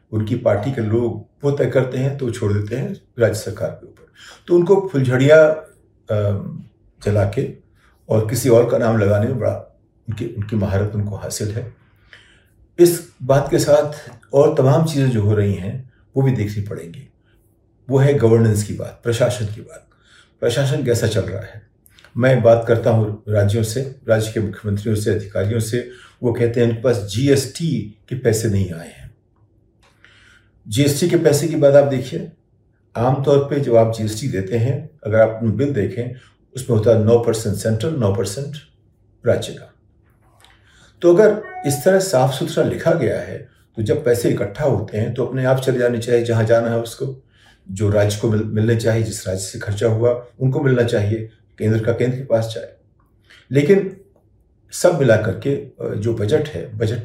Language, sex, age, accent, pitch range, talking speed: Hindi, male, 50-69, native, 110-130 Hz, 170 wpm